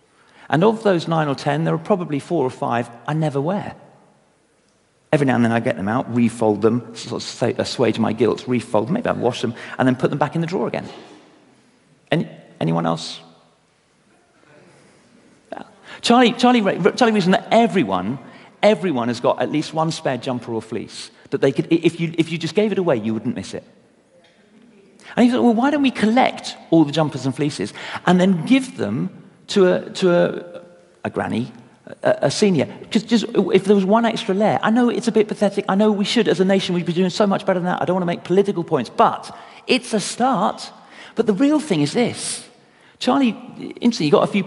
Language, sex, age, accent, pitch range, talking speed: English, male, 40-59, British, 150-215 Hz, 210 wpm